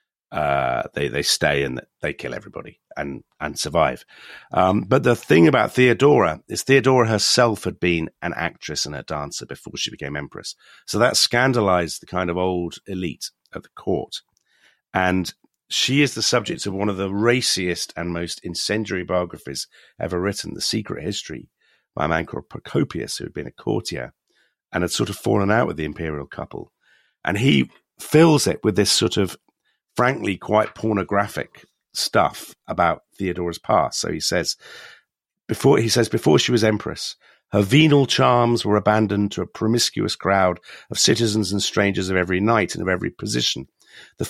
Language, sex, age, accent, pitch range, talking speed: English, male, 50-69, British, 90-115 Hz, 170 wpm